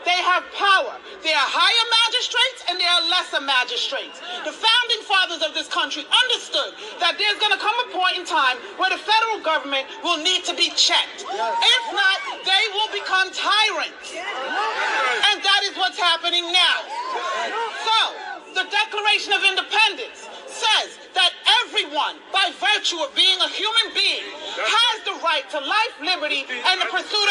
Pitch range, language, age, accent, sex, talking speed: 355-460 Hz, English, 40-59, American, female, 160 wpm